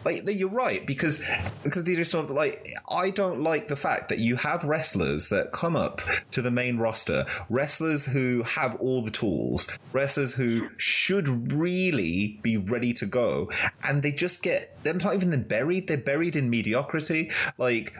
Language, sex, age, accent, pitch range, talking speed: English, male, 30-49, British, 110-145 Hz, 175 wpm